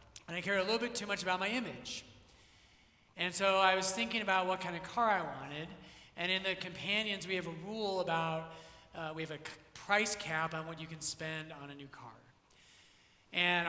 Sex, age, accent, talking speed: male, 30-49, American, 210 wpm